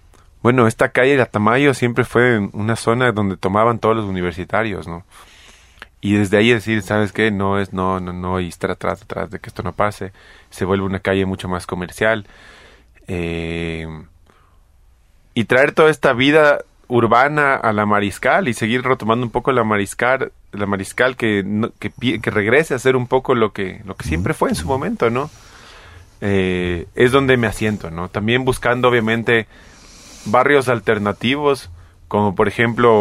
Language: Spanish